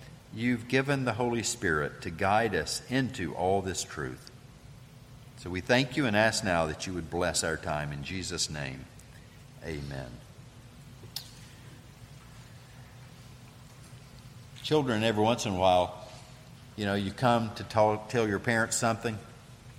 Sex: male